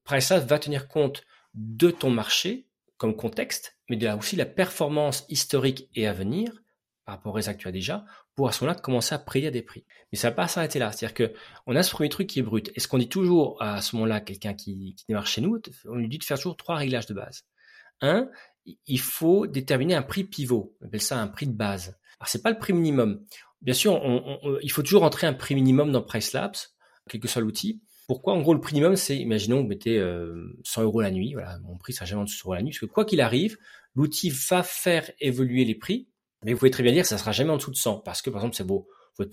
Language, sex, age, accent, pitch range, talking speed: French, male, 40-59, French, 110-155 Hz, 265 wpm